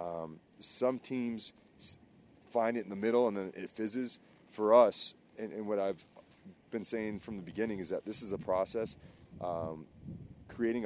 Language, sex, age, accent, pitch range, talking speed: English, male, 30-49, American, 100-120 Hz, 170 wpm